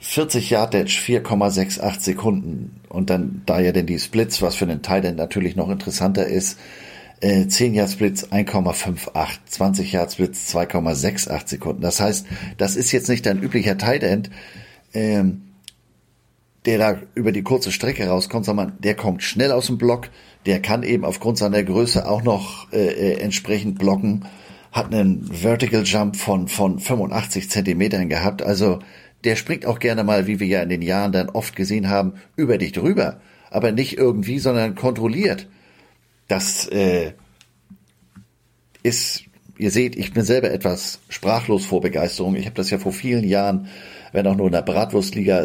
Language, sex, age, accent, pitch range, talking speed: German, male, 50-69, German, 90-110 Hz, 155 wpm